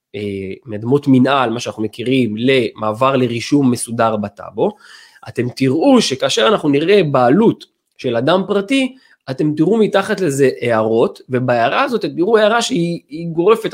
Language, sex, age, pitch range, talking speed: Hebrew, male, 20-39, 125-180 Hz, 125 wpm